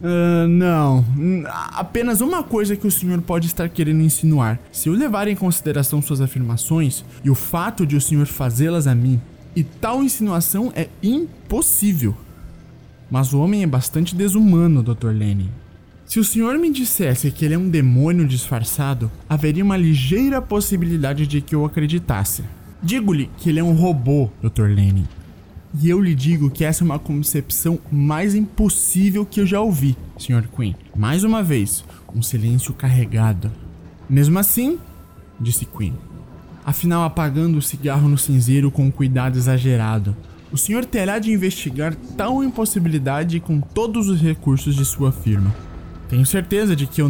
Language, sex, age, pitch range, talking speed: Portuguese, male, 20-39, 125-175 Hz, 160 wpm